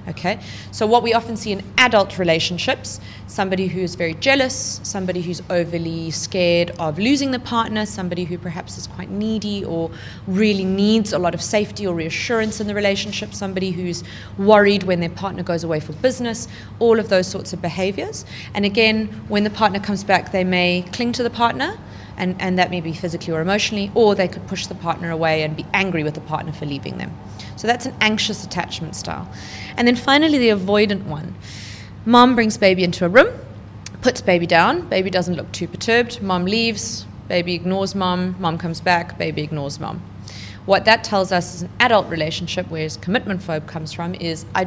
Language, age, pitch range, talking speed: English, 30-49, 160-205 Hz, 195 wpm